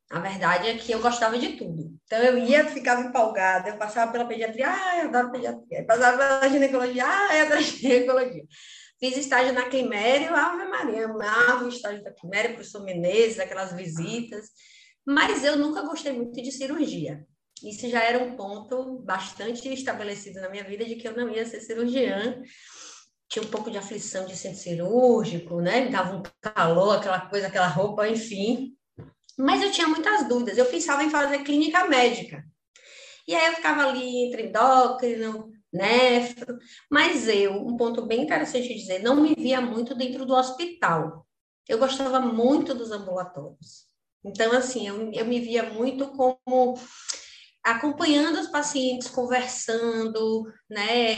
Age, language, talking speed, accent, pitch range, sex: 20-39, Portuguese, 160 wpm, Brazilian, 215-265 Hz, female